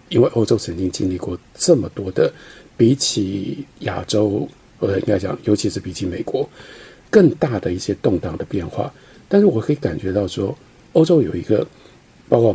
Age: 50-69